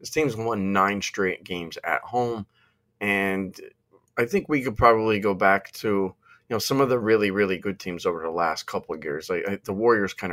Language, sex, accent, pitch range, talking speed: English, male, American, 95-115 Hz, 210 wpm